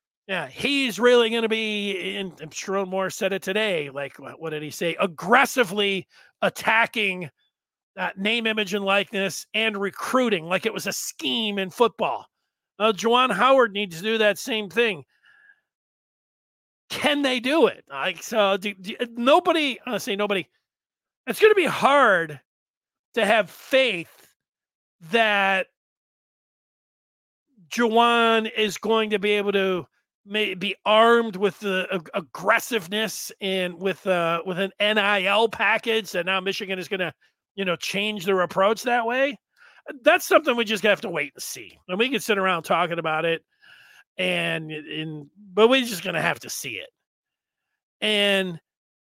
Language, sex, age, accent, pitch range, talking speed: English, male, 40-59, American, 190-230 Hz, 155 wpm